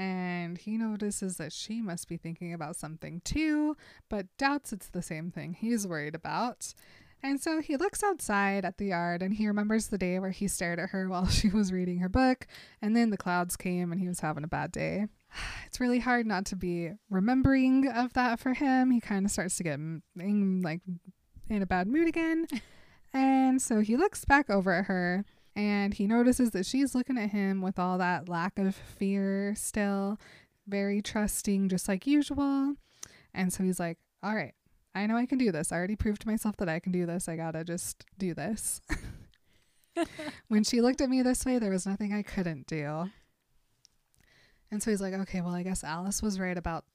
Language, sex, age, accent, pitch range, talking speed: English, female, 20-39, American, 180-240 Hz, 205 wpm